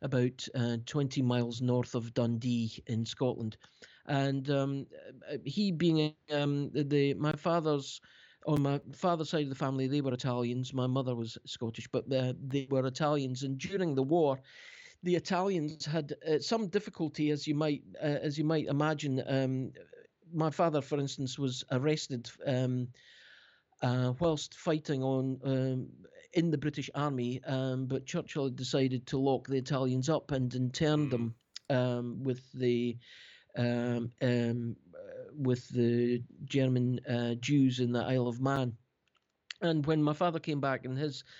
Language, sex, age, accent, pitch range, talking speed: English, male, 50-69, British, 125-150 Hz, 155 wpm